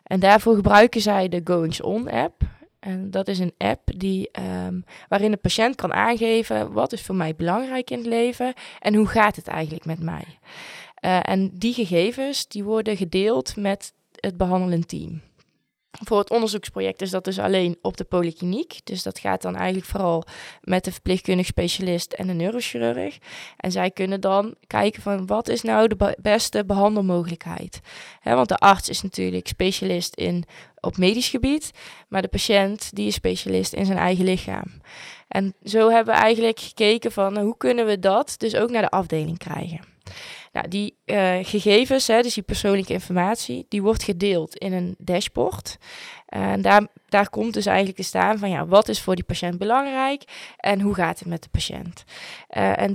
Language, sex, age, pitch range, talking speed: Dutch, female, 20-39, 175-215 Hz, 170 wpm